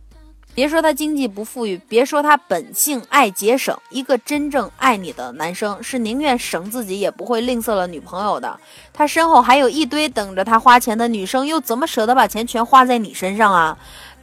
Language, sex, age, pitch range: Chinese, female, 20-39, 200-270 Hz